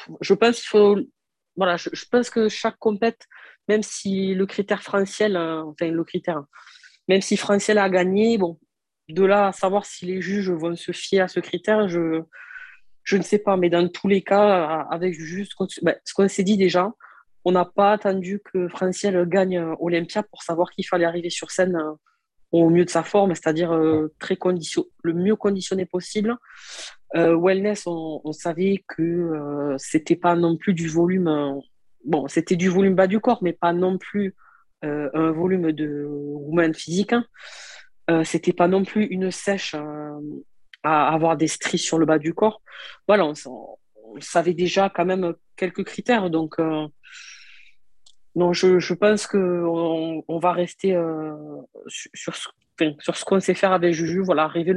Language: French